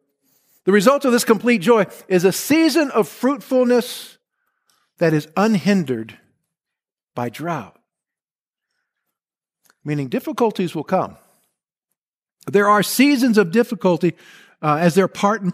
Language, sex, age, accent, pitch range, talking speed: English, male, 50-69, American, 165-225 Hz, 115 wpm